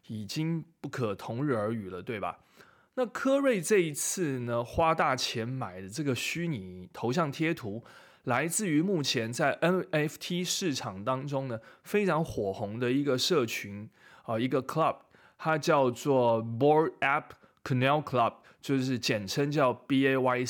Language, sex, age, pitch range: Chinese, male, 20-39, 120-165 Hz